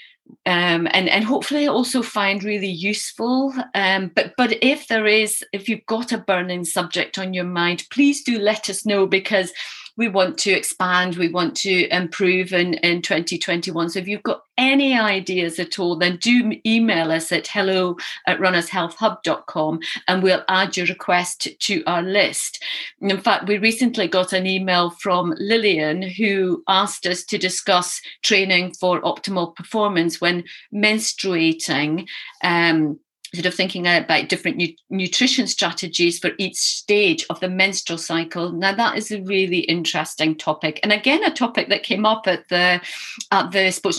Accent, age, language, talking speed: British, 40-59, English, 160 wpm